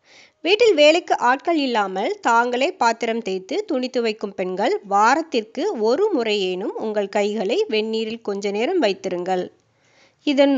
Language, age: Tamil, 20-39